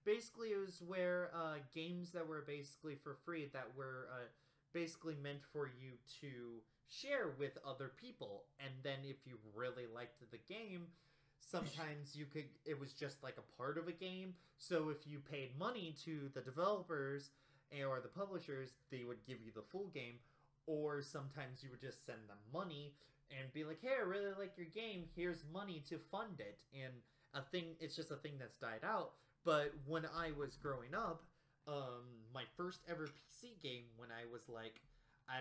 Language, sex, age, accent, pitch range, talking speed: English, male, 20-39, American, 130-165 Hz, 185 wpm